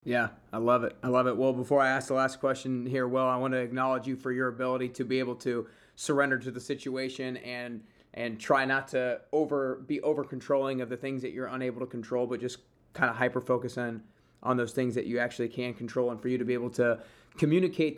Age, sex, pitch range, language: 30-49, male, 120-130 Hz, English